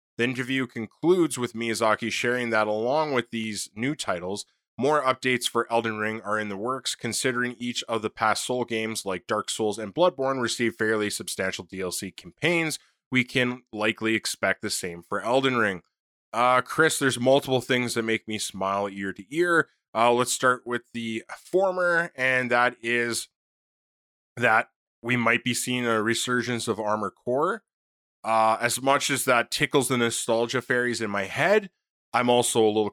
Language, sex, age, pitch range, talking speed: English, male, 20-39, 110-130 Hz, 170 wpm